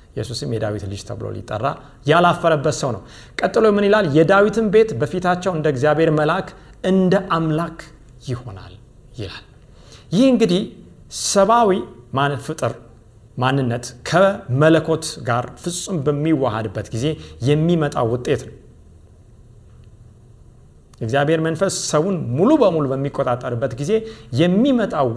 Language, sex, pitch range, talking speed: Amharic, male, 120-175 Hz, 100 wpm